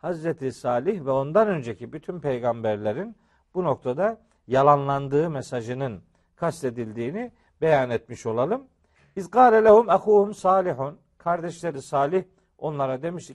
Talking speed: 105 wpm